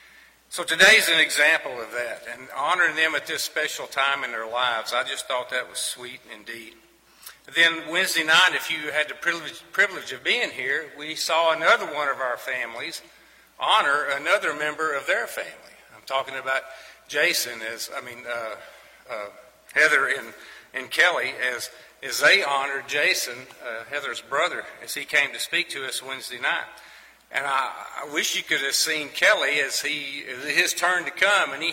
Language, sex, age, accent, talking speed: English, male, 50-69, American, 180 wpm